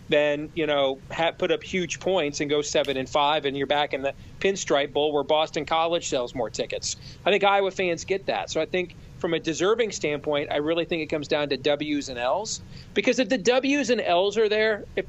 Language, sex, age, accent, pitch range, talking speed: English, male, 40-59, American, 155-215 Hz, 230 wpm